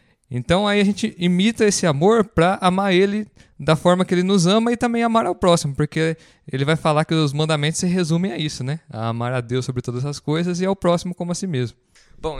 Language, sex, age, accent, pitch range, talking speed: Portuguese, male, 20-39, Brazilian, 140-185 Hz, 230 wpm